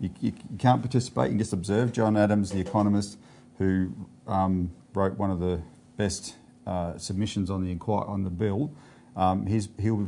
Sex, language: male, English